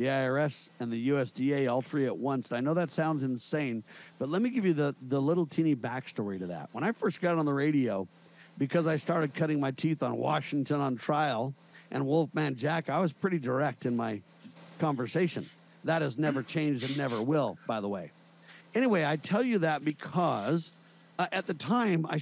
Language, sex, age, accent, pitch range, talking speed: English, male, 50-69, American, 145-180 Hz, 200 wpm